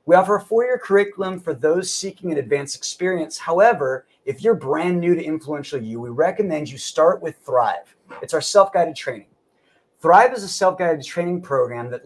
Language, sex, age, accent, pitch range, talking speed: English, male, 30-49, American, 145-200 Hz, 180 wpm